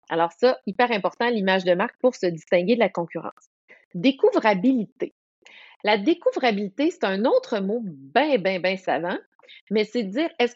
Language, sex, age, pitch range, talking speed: French, female, 30-49, 190-270 Hz, 165 wpm